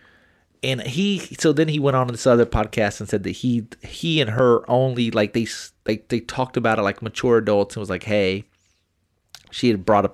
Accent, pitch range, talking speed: American, 100-120 Hz, 215 wpm